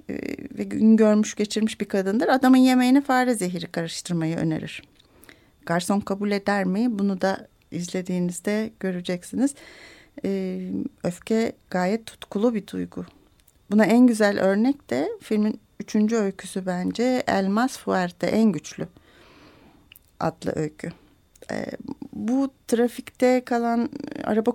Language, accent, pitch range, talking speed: Turkish, native, 195-240 Hz, 110 wpm